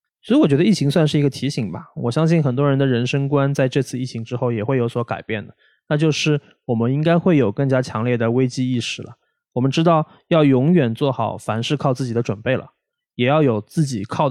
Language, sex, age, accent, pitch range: Chinese, male, 20-39, native, 115-150 Hz